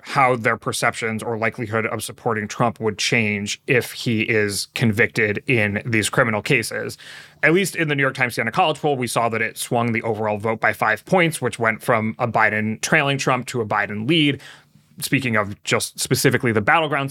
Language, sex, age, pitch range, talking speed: English, male, 30-49, 110-135 Hz, 195 wpm